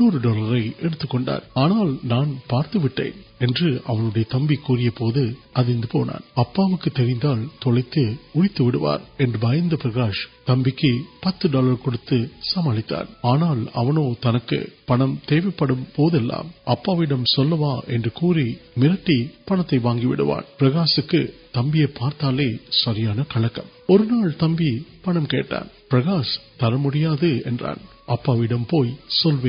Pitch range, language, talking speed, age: 120-155 Hz, Urdu, 50 wpm, 50-69